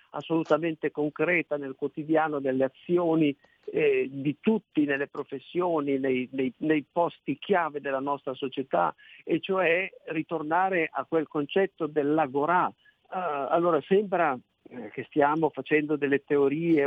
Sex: male